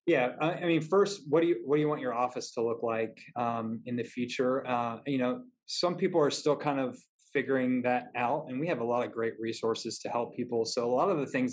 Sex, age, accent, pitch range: male, 20-39, American, 115-140 Hz